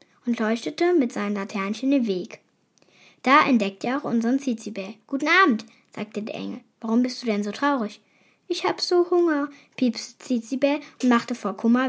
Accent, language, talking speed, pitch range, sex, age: German, German, 170 wpm, 210-265 Hz, female, 10-29